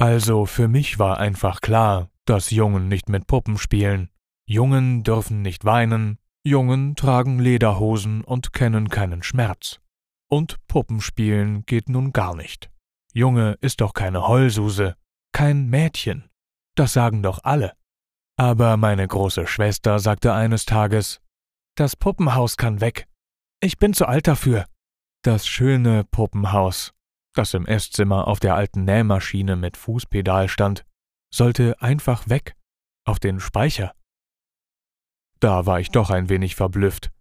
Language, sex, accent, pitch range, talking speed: German, male, German, 95-120 Hz, 135 wpm